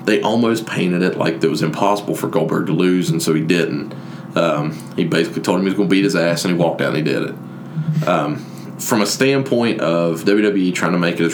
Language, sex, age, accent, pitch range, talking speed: English, male, 30-49, American, 85-105 Hz, 250 wpm